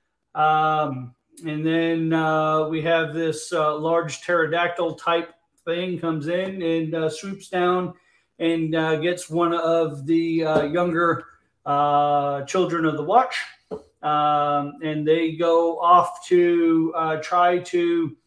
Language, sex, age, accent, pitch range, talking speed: English, male, 40-59, American, 155-180 Hz, 130 wpm